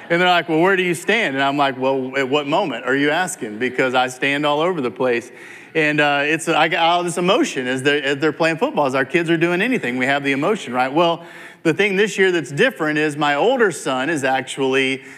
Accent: American